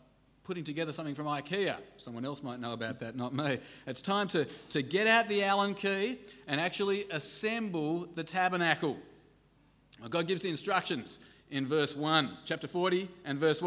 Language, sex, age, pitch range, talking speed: English, male, 40-59, 140-185 Hz, 165 wpm